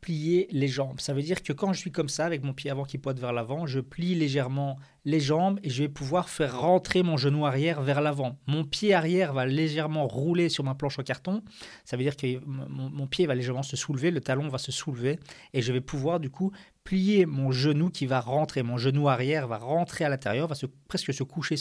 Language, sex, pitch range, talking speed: French, male, 135-175 Hz, 240 wpm